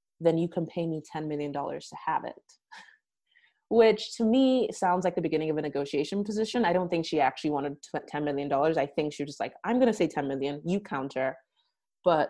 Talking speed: 215 wpm